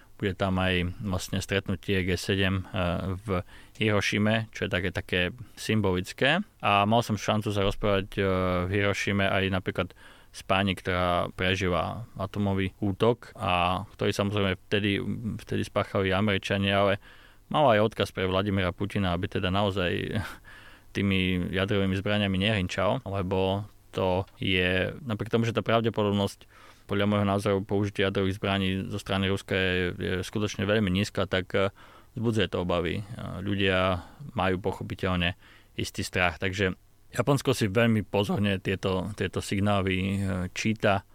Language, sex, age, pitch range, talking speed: Slovak, male, 20-39, 95-110 Hz, 130 wpm